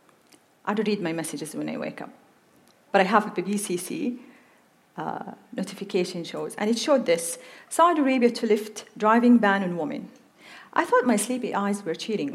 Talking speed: 175 wpm